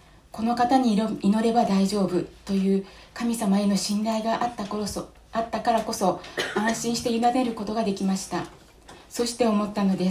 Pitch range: 185-225 Hz